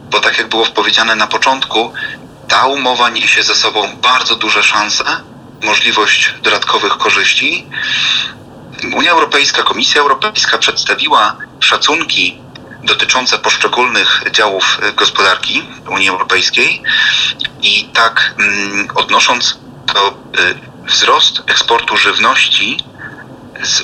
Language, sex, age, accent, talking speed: Polish, male, 30-49, native, 95 wpm